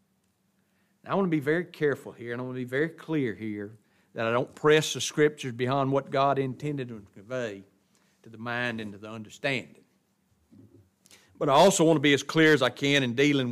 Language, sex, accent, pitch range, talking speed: English, male, American, 125-155 Hz, 210 wpm